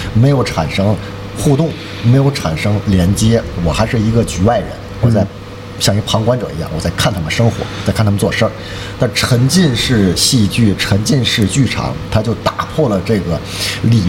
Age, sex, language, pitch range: 50-69, male, Chinese, 95-120 Hz